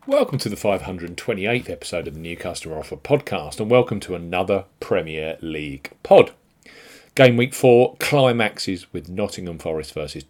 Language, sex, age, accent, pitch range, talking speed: English, male, 40-59, British, 95-125 Hz, 150 wpm